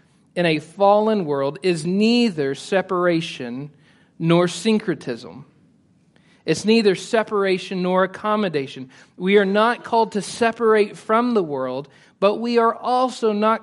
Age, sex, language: 40-59, male, English